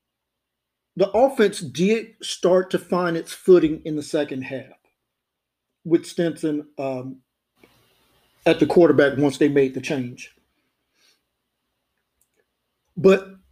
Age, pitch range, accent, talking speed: 50-69, 150-205 Hz, American, 100 wpm